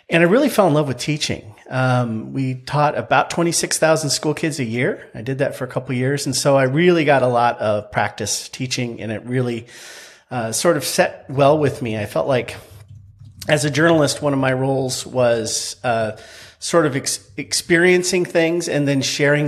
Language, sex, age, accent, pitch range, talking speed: English, male, 40-59, American, 120-150 Hz, 200 wpm